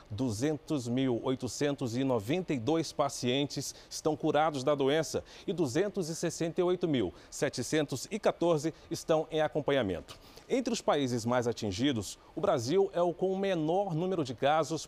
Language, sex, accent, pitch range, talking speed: Portuguese, male, Brazilian, 135-175 Hz, 100 wpm